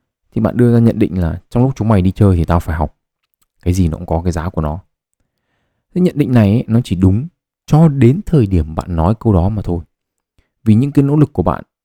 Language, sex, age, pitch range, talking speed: Vietnamese, male, 20-39, 90-120 Hz, 260 wpm